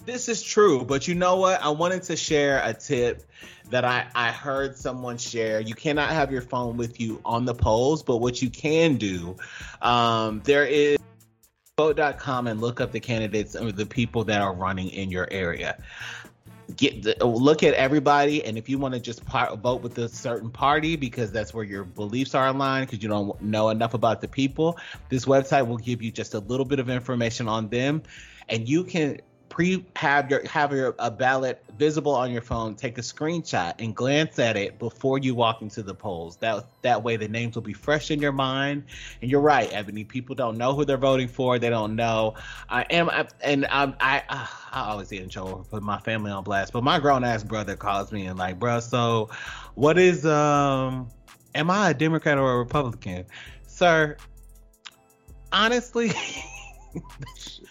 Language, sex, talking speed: English, male, 195 wpm